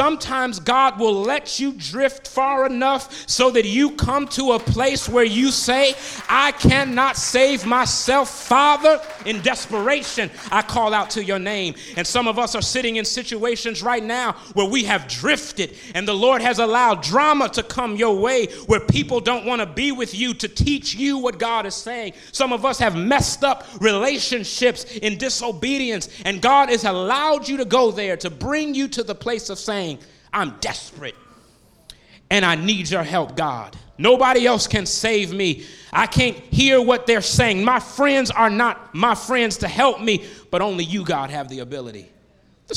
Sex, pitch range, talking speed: male, 200-260 Hz, 185 wpm